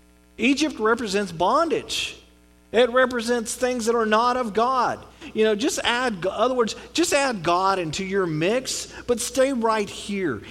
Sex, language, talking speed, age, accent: male, English, 155 wpm, 40-59, American